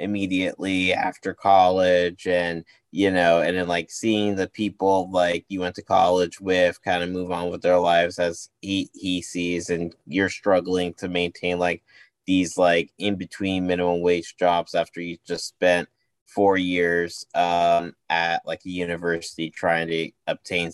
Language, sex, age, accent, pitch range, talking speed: English, male, 20-39, American, 85-100 Hz, 160 wpm